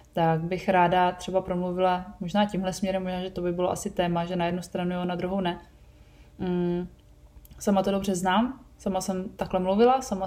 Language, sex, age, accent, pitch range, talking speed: Czech, female, 20-39, native, 180-200 Hz, 195 wpm